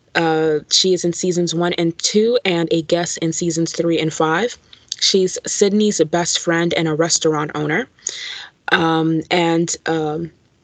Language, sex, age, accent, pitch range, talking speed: English, female, 20-39, American, 165-190 Hz, 150 wpm